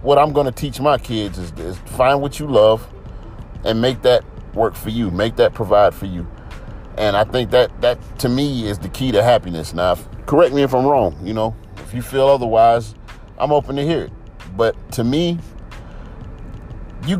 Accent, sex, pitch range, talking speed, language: American, male, 105-130 Hz, 200 wpm, English